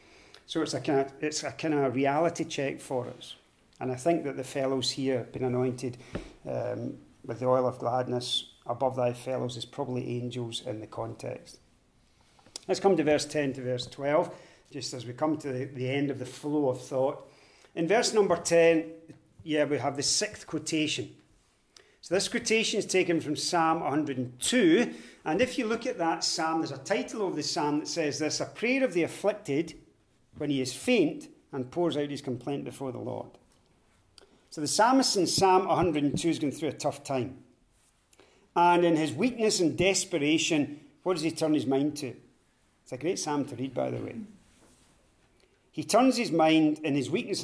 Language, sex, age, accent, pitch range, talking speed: English, male, 40-59, British, 130-165 Hz, 185 wpm